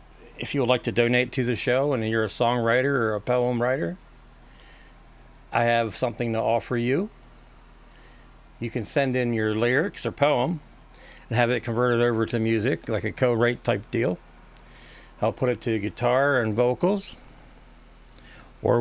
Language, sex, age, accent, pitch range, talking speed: English, male, 40-59, American, 115-135 Hz, 165 wpm